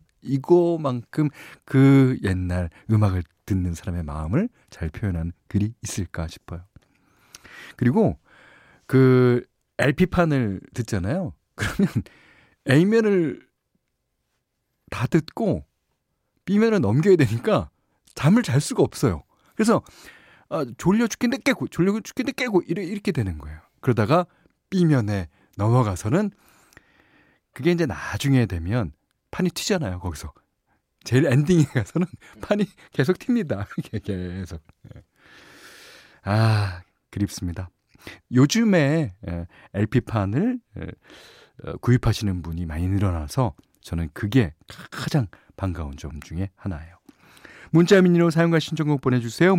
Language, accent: Korean, native